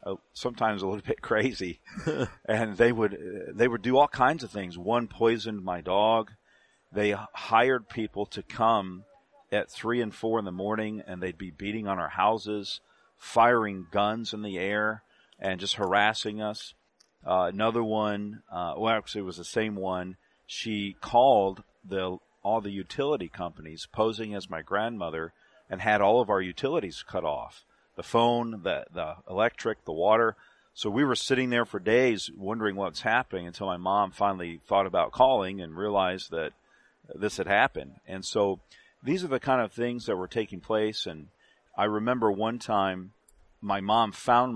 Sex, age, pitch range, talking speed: male, 40-59, 95-115 Hz, 170 wpm